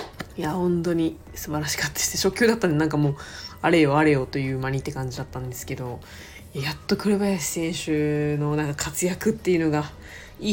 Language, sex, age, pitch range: Japanese, female, 20-39, 135-170 Hz